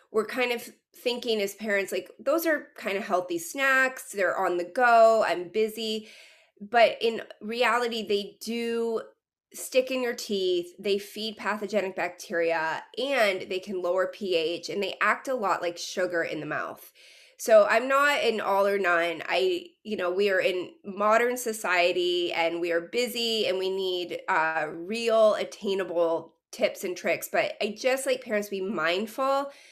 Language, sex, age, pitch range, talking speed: English, female, 20-39, 185-240 Hz, 170 wpm